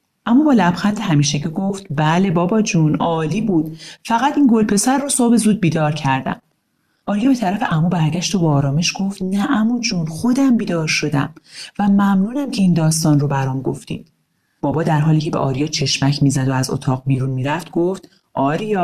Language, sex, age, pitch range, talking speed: Persian, male, 40-59, 145-195 Hz, 190 wpm